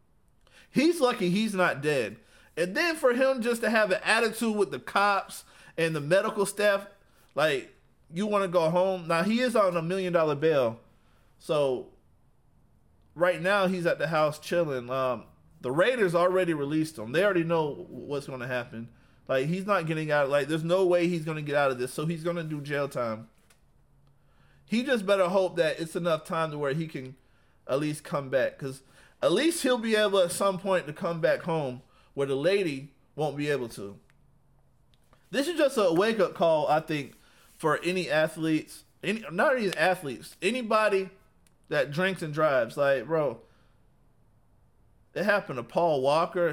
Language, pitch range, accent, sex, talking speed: English, 140-195 Hz, American, male, 180 wpm